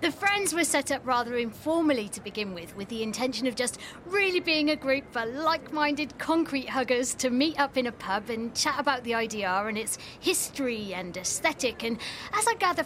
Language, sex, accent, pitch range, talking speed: English, female, British, 245-345 Hz, 200 wpm